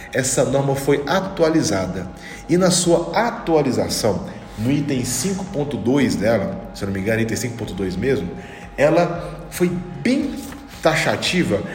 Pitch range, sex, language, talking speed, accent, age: 115-170 Hz, male, Portuguese, 115 wpm, Brazilian, 40-59